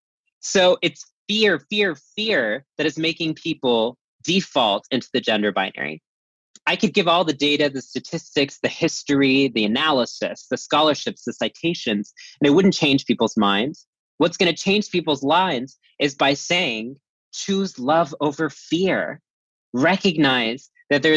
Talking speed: 145 wpm